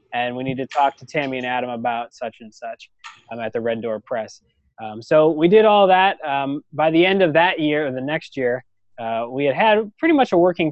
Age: 20-39